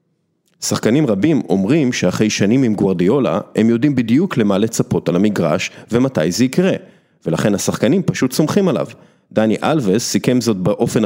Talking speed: 140 wpm